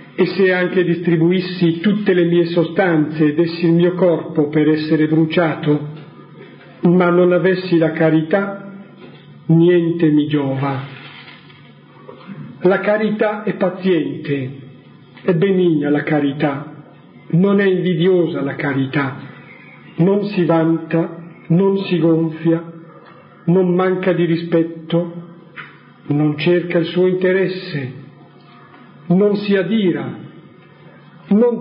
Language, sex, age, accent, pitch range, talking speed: Italian, male, 50-69, native, 155-185 Hz, 105 wpm